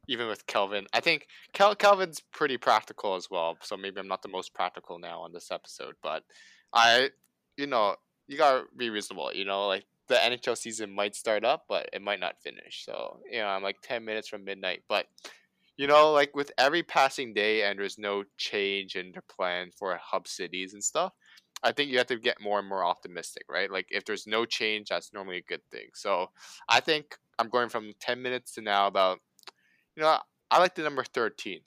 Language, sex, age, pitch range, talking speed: English, male, 20-39, 100-125 Hz, 215 wpm